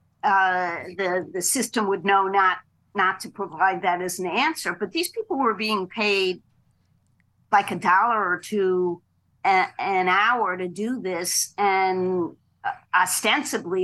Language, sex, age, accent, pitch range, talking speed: English, female, 50-69, American, 175-205 Hz, 145 wpm